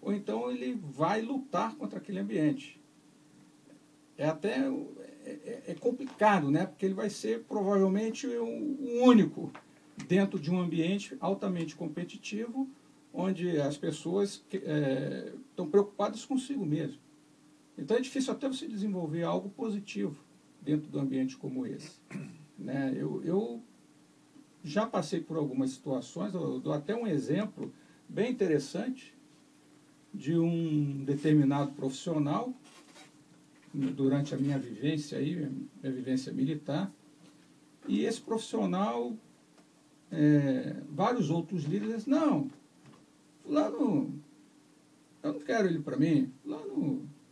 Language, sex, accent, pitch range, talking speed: Portuguese, male, Brazilian, 150-240 Hz, 110 wpm